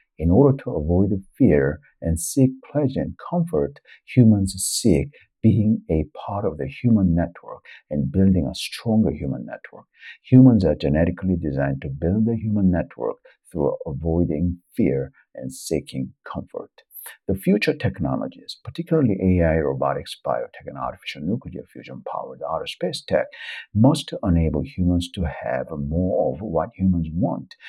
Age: 60-79